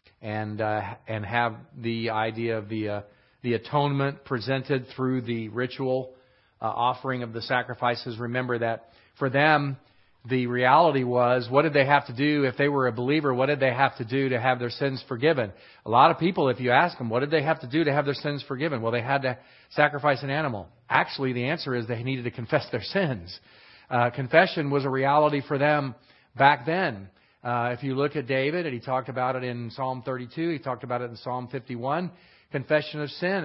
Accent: American